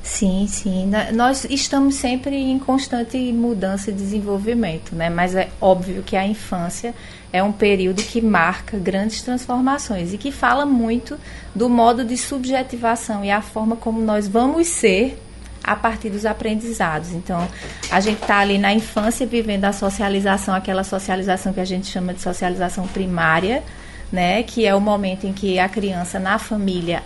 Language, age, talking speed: Portuguese, 20-39, 160 wpm